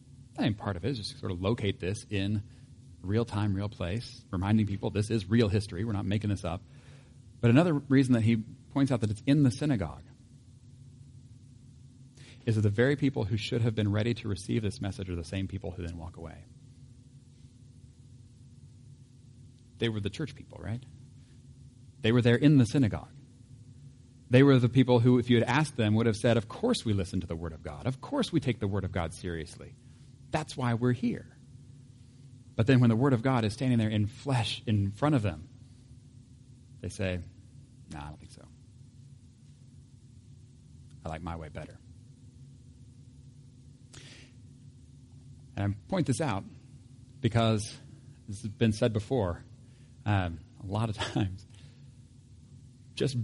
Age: 40-59